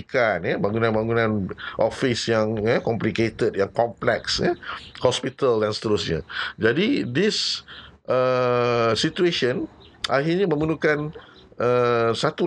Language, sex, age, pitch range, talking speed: Malay, male, 50-69, 105-135 Hz, 100 wpm